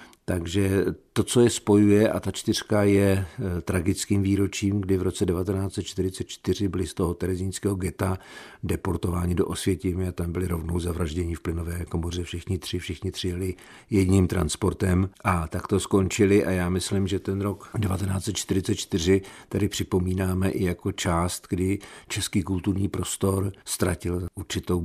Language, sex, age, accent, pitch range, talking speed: Czech, male, 50-69, native, 85-95 Hz, 145 wpm